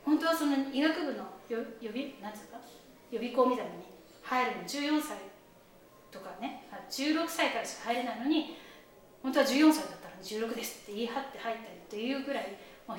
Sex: female